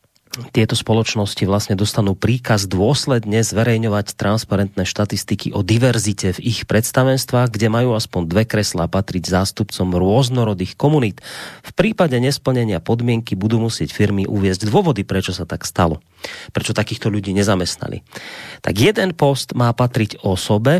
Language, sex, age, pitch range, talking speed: Slovak, male, 30-49, 100-135 Hz, 135 wpm